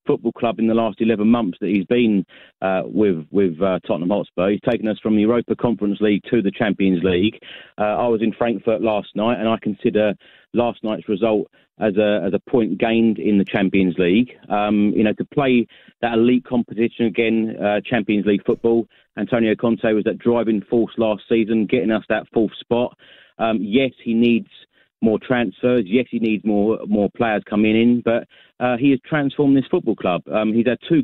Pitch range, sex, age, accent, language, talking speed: 105-120 Hz, male, 30-49, British, English, 195 wpm